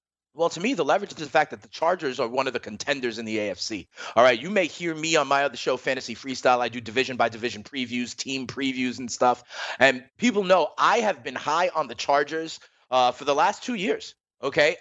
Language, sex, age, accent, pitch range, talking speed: English, male, 30-49, American, 130-200 Hz, 235 wpm